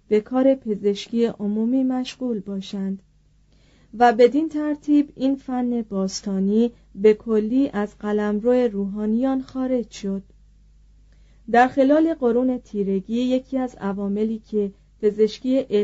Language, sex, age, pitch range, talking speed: Persian, female, 40-59, 205-245 Hz, 105 wpm